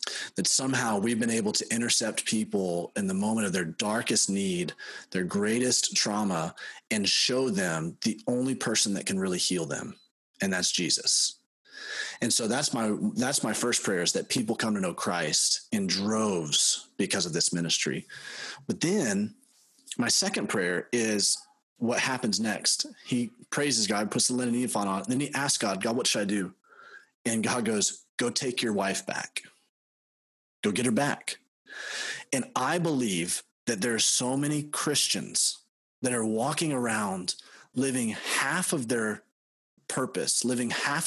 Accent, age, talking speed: American, 30-49, 165 wpm